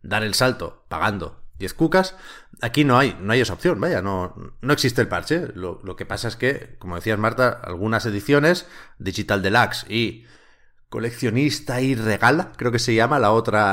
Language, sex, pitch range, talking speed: Spanish, male, 95-125 Hz, 185 wpm